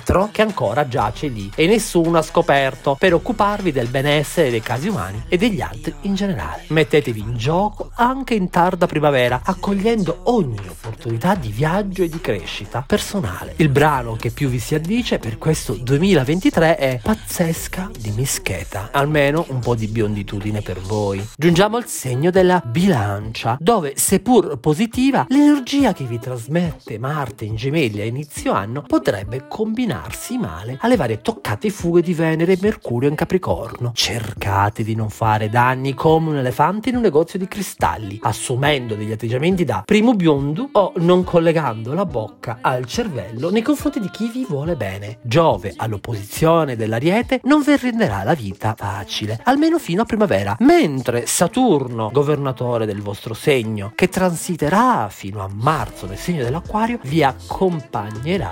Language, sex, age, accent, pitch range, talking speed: Italian, male, 40-59, native, 115-190 Hz, 155 wpm